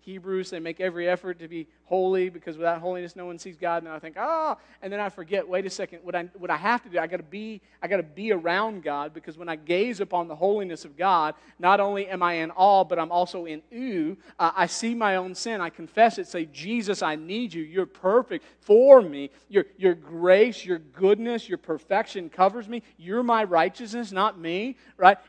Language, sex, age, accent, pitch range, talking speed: English, male, 40-59, American, 150-200 Hz, 235 wpm